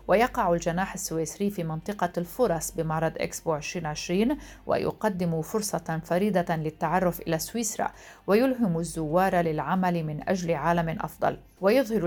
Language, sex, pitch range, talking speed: Arabic, female, 165-210 Hz, 115 wpm